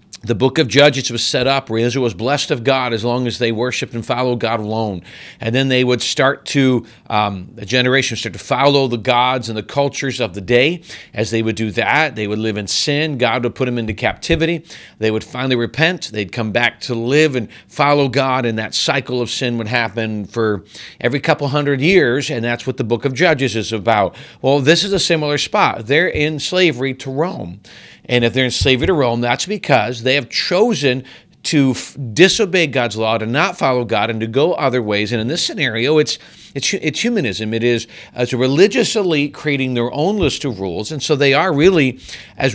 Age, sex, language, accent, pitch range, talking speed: 40-59, male, English, American, 115-145 Hz, 220 wpm